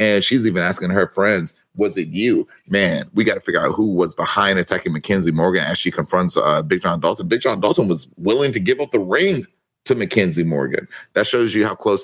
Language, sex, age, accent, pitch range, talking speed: English, male, 30-49, American, 95-130 Hz, 230 wpm